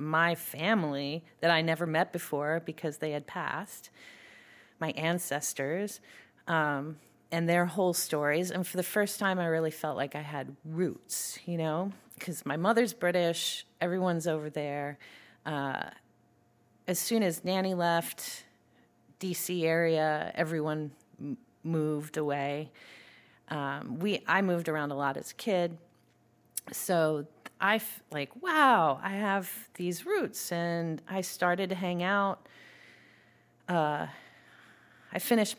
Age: 30-49